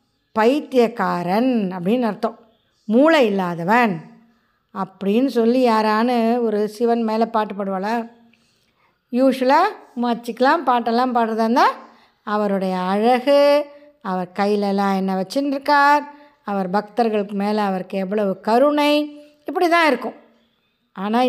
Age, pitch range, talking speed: 20-39, 210-280 Hz, 95 wpm